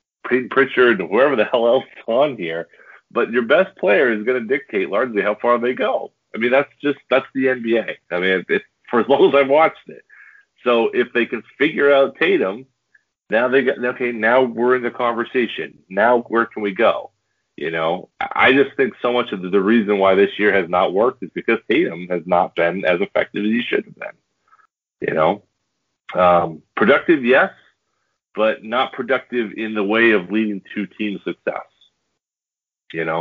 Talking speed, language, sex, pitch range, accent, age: 195 wpm, English, male, 95-120 Hz, American, 40-59